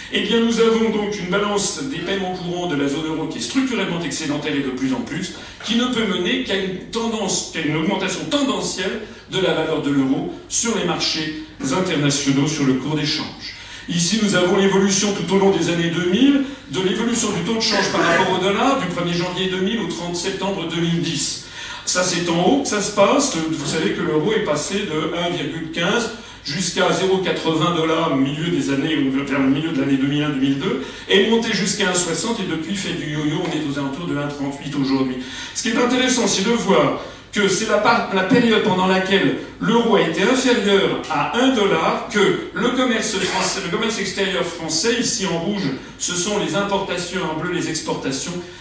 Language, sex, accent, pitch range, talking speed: French, male, French, 160-210 Hz, 195 wpm